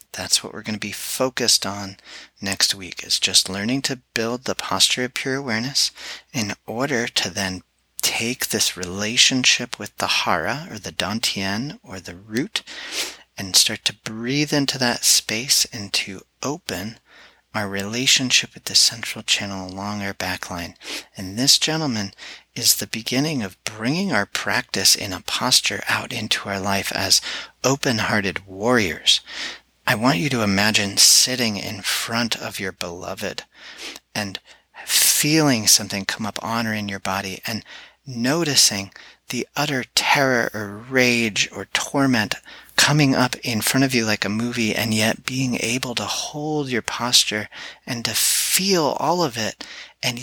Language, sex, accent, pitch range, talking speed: English, male, American, 100-130 Hz, 155 wpm